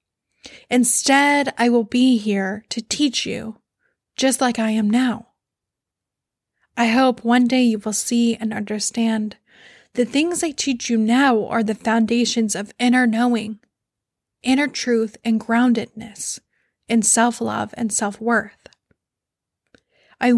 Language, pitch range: English, 220-255 Hz